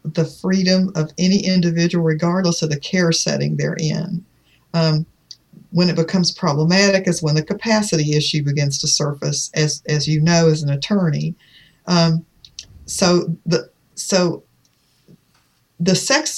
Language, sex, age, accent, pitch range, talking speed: English, female, 50-69, American, 160-195 Hz, 140 wpm